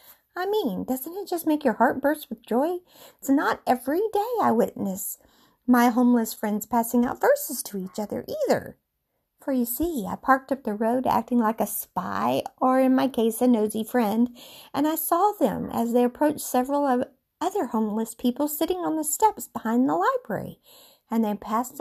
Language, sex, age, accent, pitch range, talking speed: English, female, 50-69, American, 230-345 Hz, 185 wpm